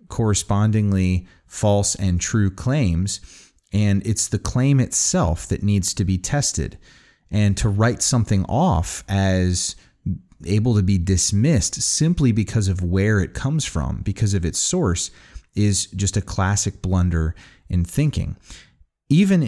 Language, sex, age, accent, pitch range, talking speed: English, male, 30-49, American, 90-110 Hz, 135 wpm